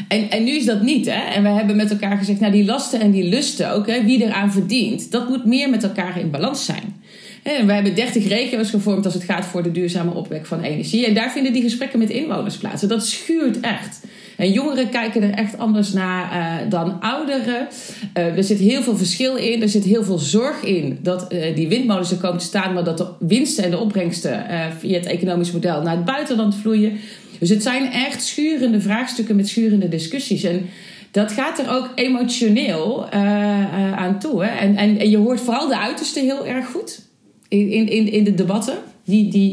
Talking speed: 215 wpm